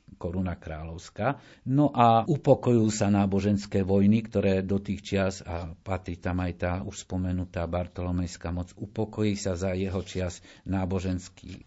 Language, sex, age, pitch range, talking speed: Slovak, male, 50-69, 90-105 Hz, 140 wpm